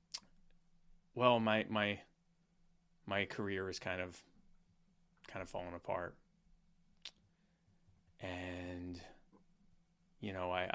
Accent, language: American, English